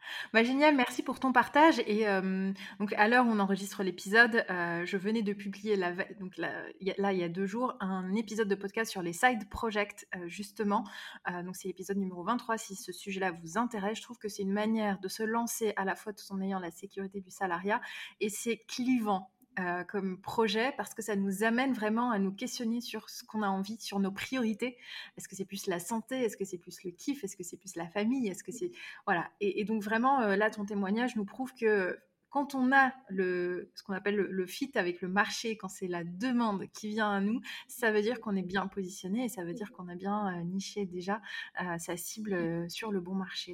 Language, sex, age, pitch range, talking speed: French, female, 20-39, 190-225 Hz, 240 wpm